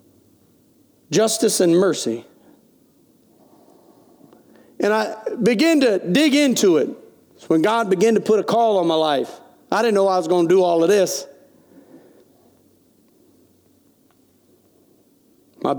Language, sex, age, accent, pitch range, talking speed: English, male, 40-59, American, 150-210 Hz, 120 wpm